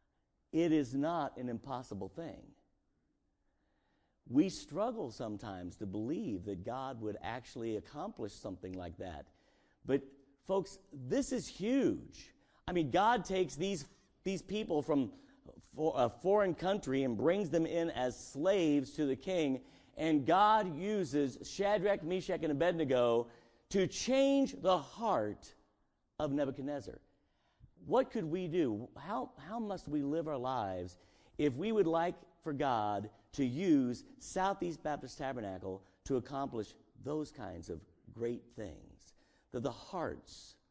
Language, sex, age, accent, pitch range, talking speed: English, male, 50-69, American, 115-180 Hz, 130 wpm